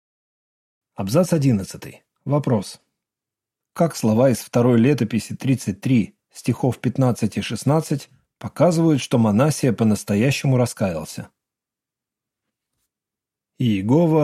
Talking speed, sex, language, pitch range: 80 wpm, male, Russian, 115-150 Hz